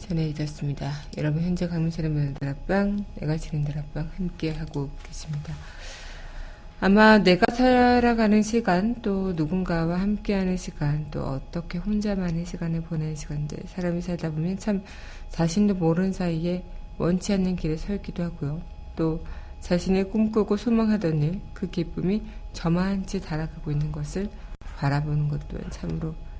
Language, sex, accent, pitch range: Korean, female, native, 155-195 Hz